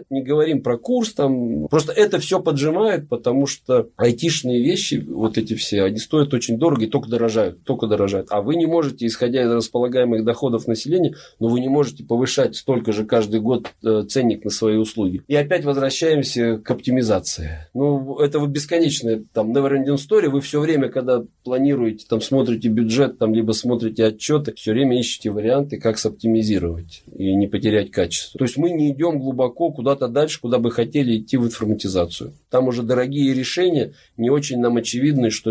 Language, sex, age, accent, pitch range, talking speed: Russian, male, 20-39, native, 110-135 Hz, 175 wpm